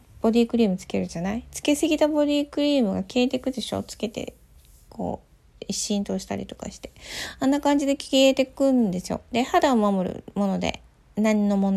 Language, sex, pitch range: Japanese, female, 205-305 Hz